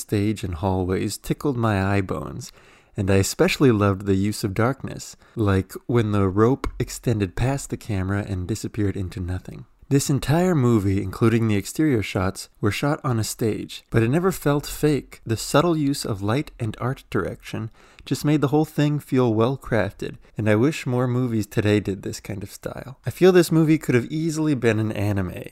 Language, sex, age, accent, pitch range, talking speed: English, male, 20-39, American, 100-130 Hz, 190 wpm